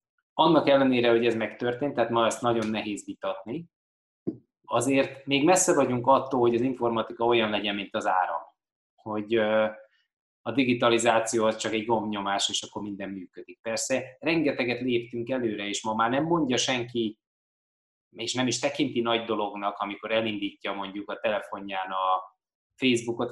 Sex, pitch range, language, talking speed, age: male, 105-125 Hz, Hungarian, 150 wpm, 20-39